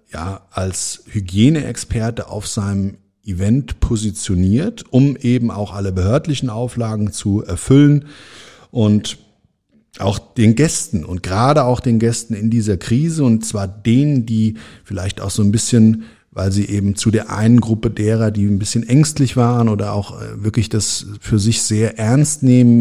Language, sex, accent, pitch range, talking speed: German, male, German, 100-120 Hz, 155 wpm